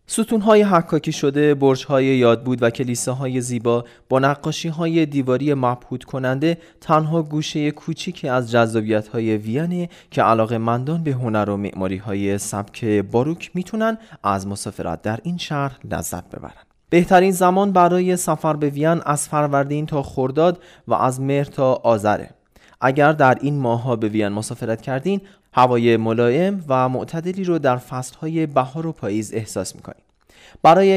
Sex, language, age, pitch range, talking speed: male, Persian, 20-39, 115-160 Hz, 145 wpm